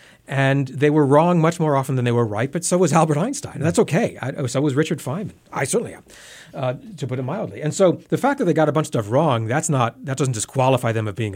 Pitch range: 115-165 Hz